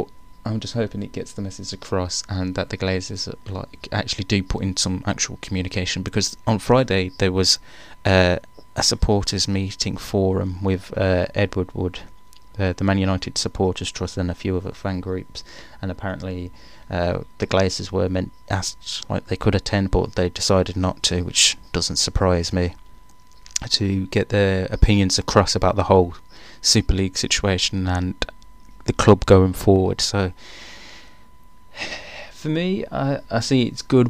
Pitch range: 95-105 Hz